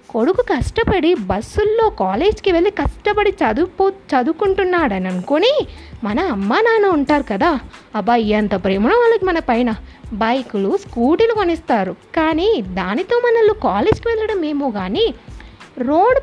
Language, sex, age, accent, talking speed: Telugu, female, 20-39, native, 105 wpm